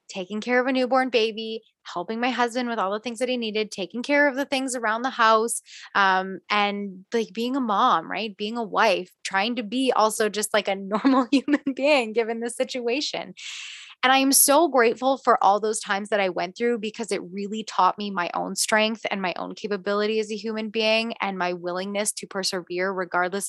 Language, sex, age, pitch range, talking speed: English, female, 20-39, 190-245 Hz, 210 wpm